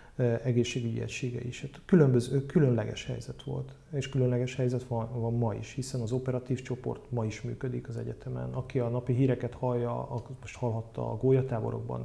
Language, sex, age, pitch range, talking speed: Hungarian, male, 40-59, 115-135 Hz, 165 wpm